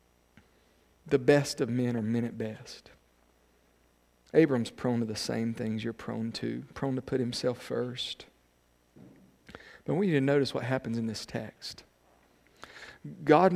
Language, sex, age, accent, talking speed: English, male, 50-69, American, 150 wpm